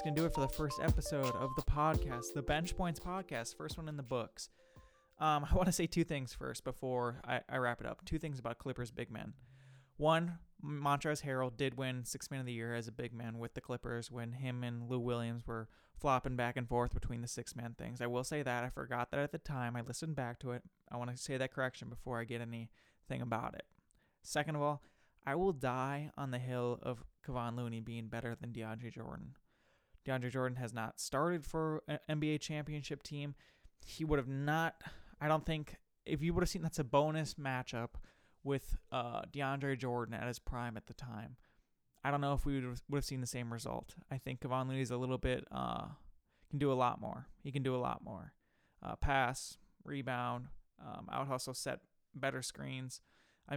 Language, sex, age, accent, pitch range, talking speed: English, male, 20-39, American, 120-145 Hz, 215 wpm